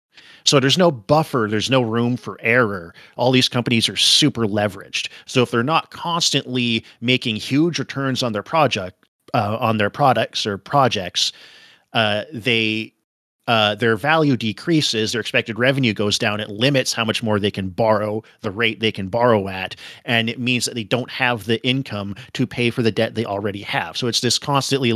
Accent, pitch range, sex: American, 105-130 Hz, male